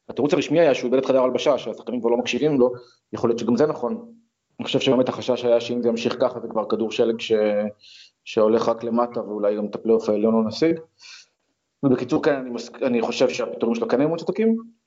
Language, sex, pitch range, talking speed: Hebrew, male, 115-145 Hz, 205 wpm